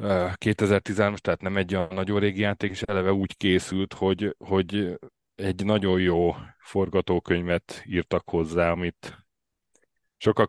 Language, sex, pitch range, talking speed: Hungarian, male, 85-100 Hz, 125 wpm